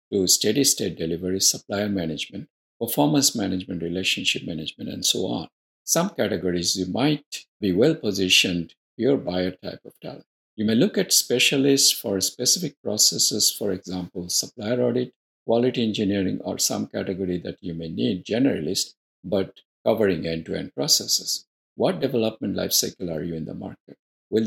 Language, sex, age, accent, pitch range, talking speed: English, male, 50-69, Indian, 90-130 Hz, 140 wpm